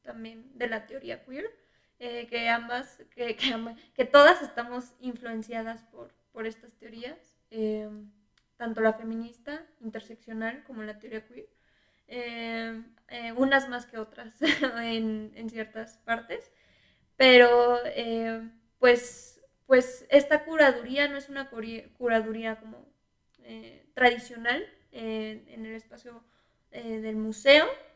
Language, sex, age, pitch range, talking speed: Spanish, female, 20-39, 225-255 Hz, 125 wpm